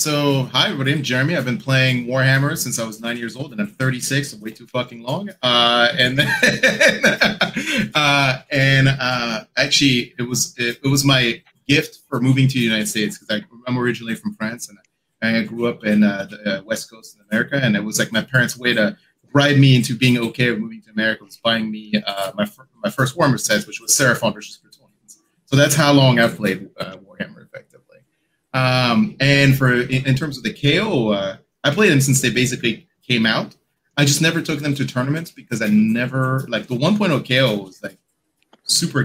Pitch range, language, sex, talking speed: 120-145 Hz, English, male, 210 wpm